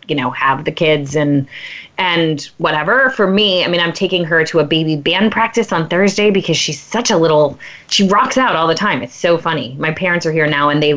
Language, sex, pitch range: English, female, 160-230 Hz